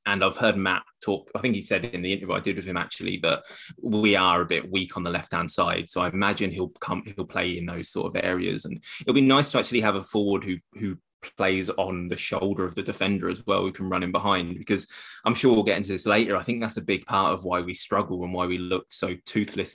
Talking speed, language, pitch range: 270 wpm, English, 90-105 Hz